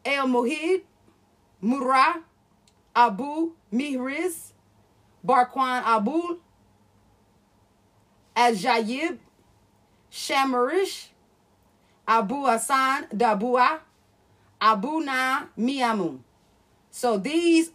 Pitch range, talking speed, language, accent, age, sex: 215-280 Hz, 50 wpm, English, American, 30-49, female